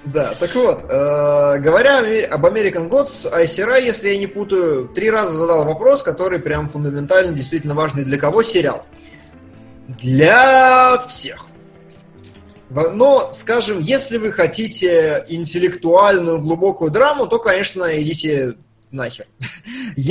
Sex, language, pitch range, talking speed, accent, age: male, Russian, 145-195 Hz, 115 wpm, native, 20-39